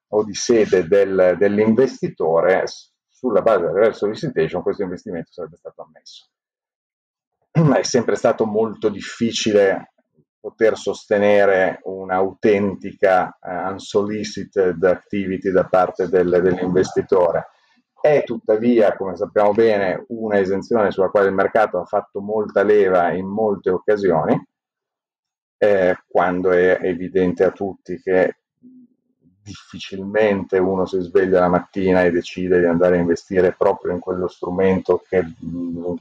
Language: Italian